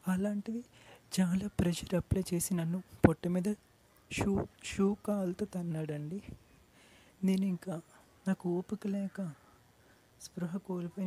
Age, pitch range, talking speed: 30-49, 160-195 Hz, 110 wpm